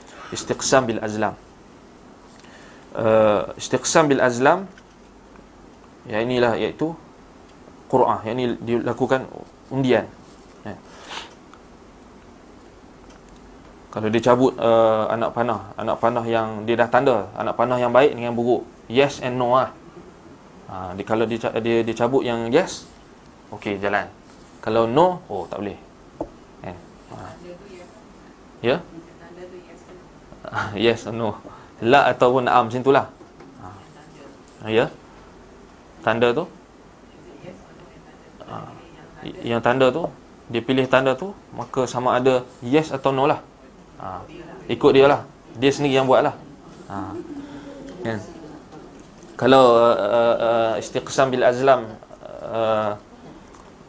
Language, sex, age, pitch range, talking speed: Malay, male, 20-39, 110-130 Hz, 115 wpm